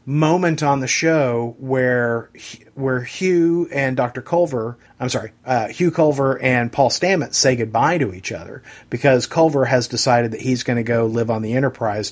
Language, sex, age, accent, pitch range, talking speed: English, male, 40-59, American, 120-155 Hz, 180 wpm